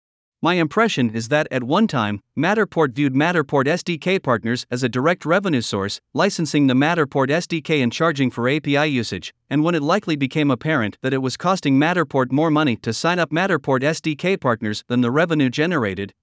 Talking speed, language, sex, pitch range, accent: 180 wpm, English, male, 130-170 Hz, American